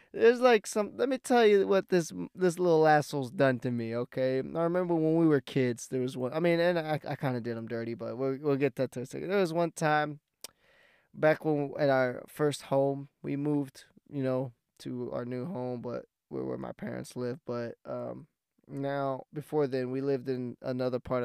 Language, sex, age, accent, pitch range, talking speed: English, male, 20-39, American, 125-150 Hz, 215 wpm